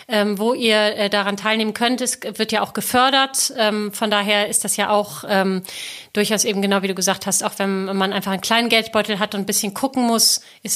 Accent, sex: German, female